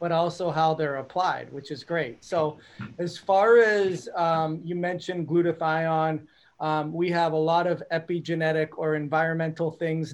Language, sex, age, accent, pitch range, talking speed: English, male, 30-49, American, 155-175 Hz, 155 wpm